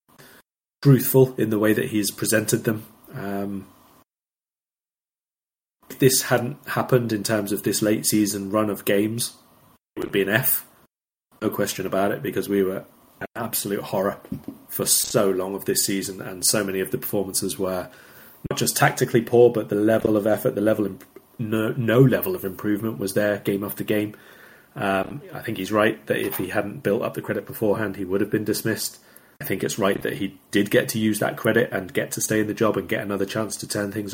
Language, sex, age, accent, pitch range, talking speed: English, male, 30-49, British, 100-110 Hz, 205 wpm